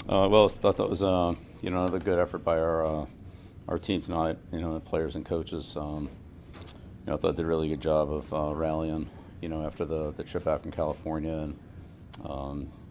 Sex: male